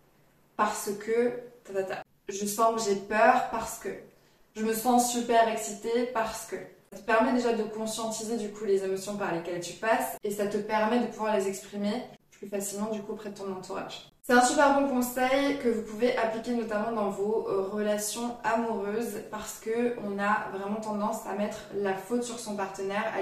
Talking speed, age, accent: 200 wpm, 20-39, French